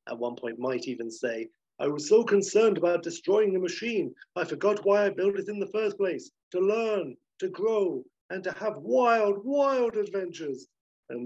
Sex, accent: male, British